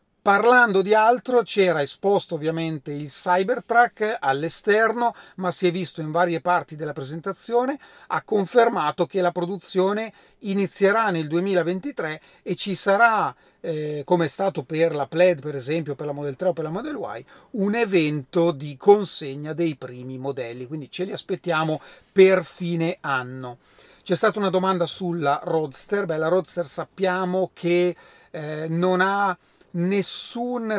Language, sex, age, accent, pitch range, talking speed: Italian, male, 40-59, native, 160-200 Hz, 150 wpm